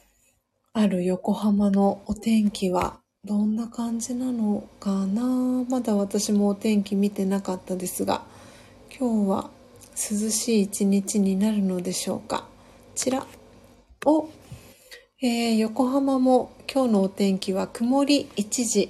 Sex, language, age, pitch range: female, Japanese, 40-59, 205-260 Hz